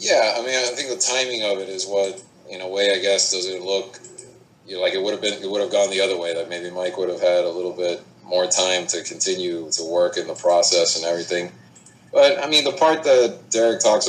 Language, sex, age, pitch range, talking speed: English, male, 30-49, 95-110 Hz, 260 wpm